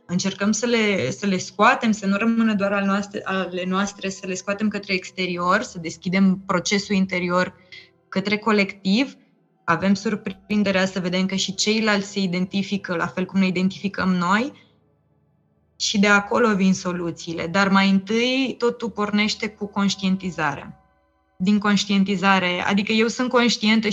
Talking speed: 140 wpm